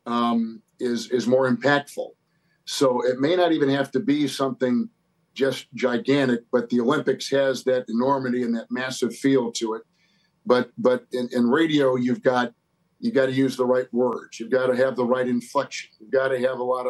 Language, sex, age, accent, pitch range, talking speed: English, male, 50-69, American, 125-155 Hz, 195 wpm